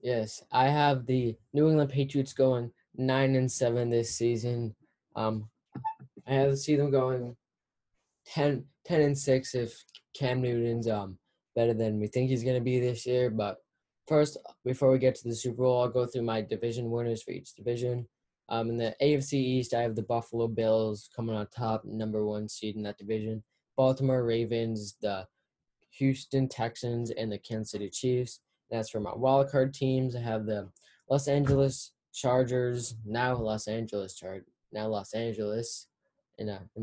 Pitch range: 110-130 Hz